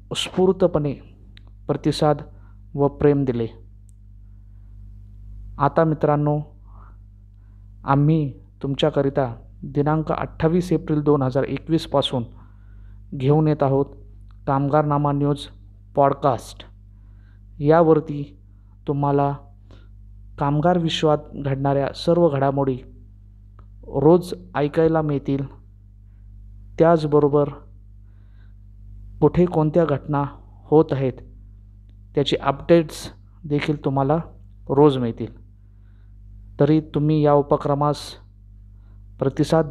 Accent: native